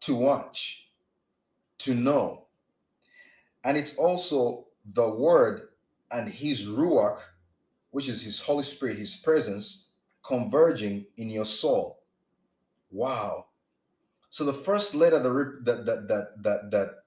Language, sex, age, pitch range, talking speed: English, male, 30-49, 125-180 Hz, 115 wpm